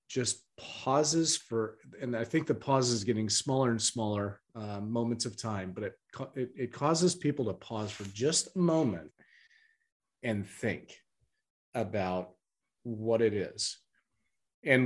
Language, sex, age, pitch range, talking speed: English, male, 30-49, 110-145 Hz, 145 wpm